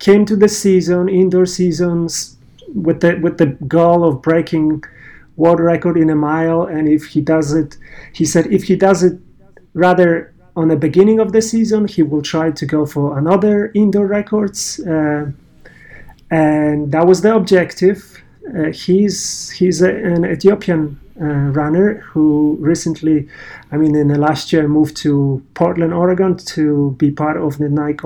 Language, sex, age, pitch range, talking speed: English, male, 40-59, 150-185 Hz, 165 wpm